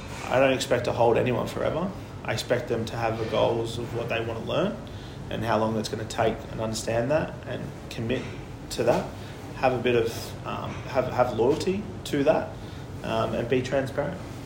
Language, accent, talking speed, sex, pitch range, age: English, Australian, 200 wpm, male, 115-130 Hz, 30-49